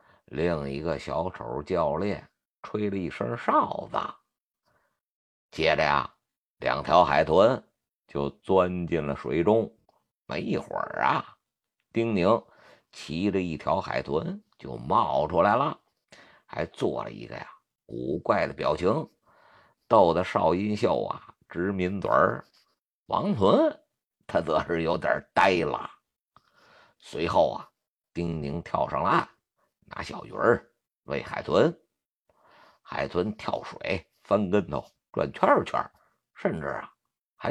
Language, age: Chinese, 50-69